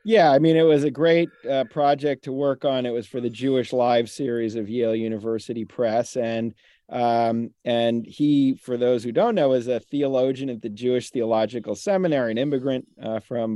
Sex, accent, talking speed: male, American, 195 wpm